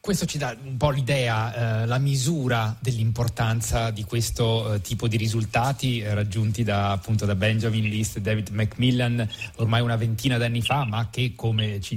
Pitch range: 110-130 Hz